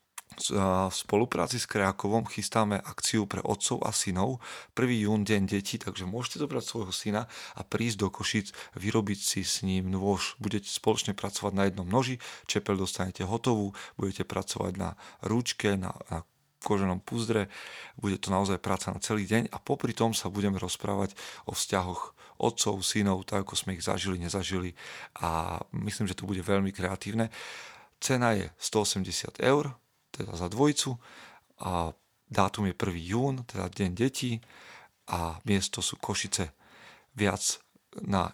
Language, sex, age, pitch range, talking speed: Slovak, male, 40-59, 95-110 Hz, 150 wpm